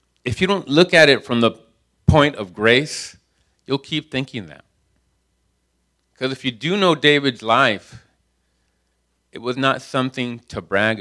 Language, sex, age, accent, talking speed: English, male, 40-59, American, 155 wpm